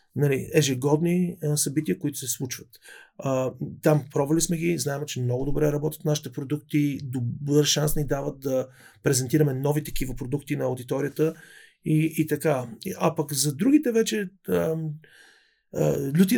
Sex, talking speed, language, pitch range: male, 130 wpm, Bulgarian, 140-160 Hz